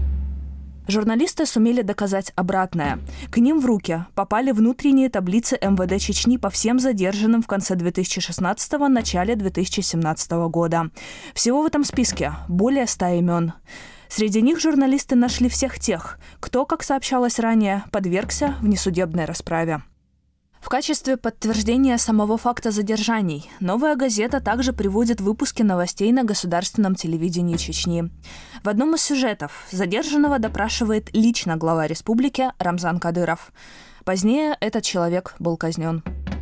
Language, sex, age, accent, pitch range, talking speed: Russian, female, 20-39, native, 175-240 Hz, 125 wpm